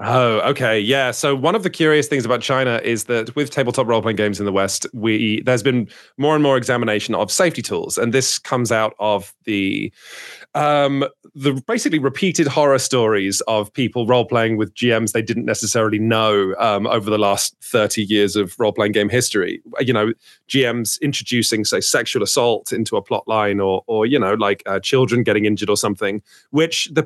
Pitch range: 110-145 Hz